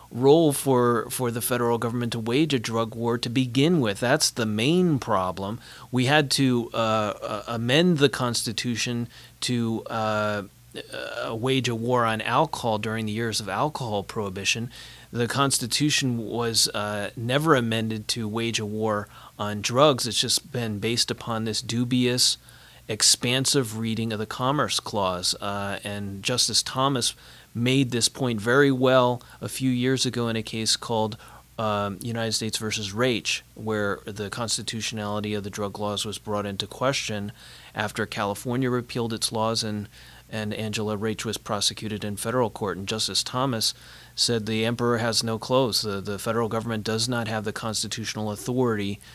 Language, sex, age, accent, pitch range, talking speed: English, male, 30-49, American, 105-125 Hz, 155 wpm